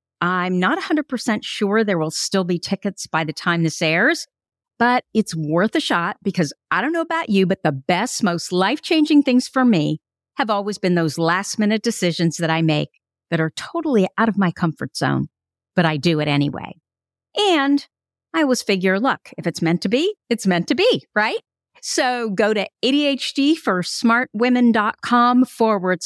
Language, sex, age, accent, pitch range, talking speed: English, female, 50-69, American, 160-245 Hz, 175 wpm